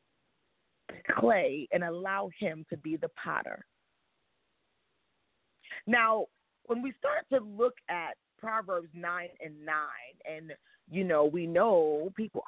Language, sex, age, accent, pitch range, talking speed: English, female, 40-59, American, 175-250 Hz, 120 wpm